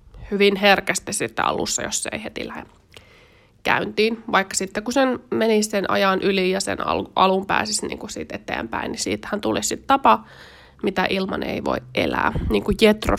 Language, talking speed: Finnish, 175 wpm